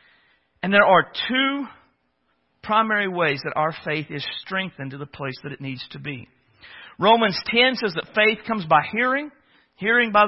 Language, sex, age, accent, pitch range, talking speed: English, male, 50-69, American, 170-260 Hz, 170 wpm